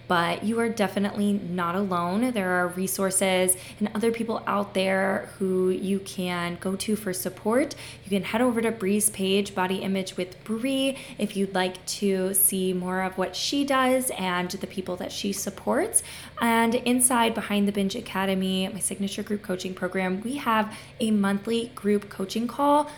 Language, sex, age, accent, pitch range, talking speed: English, female, 20-39, American, 185-230 Hz, 170 wpm